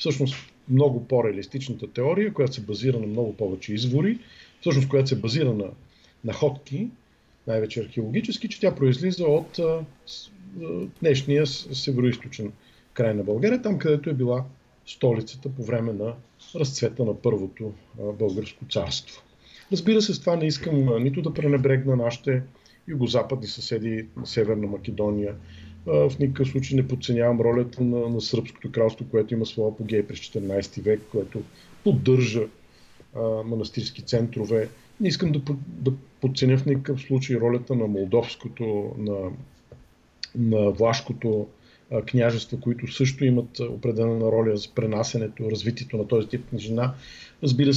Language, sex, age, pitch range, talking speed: English, male, 50-69, 110-135 Hz, 135 wpm